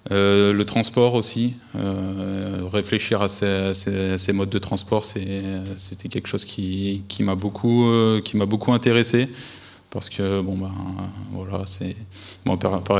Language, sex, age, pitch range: French, male, 20-39, 95-105 Hz